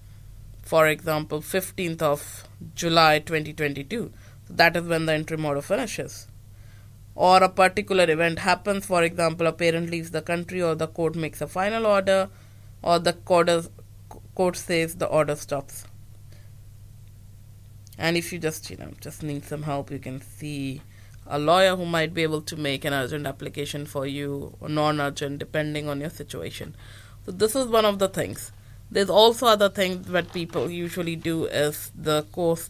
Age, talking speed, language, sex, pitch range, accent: 20-39, 160 wpm, English, female, 110-175 Hz, Indian